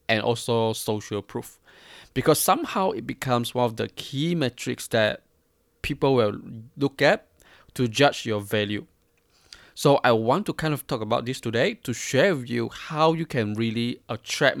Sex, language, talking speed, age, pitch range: male, English, 170 wpm, 20-39, 110-130 Hz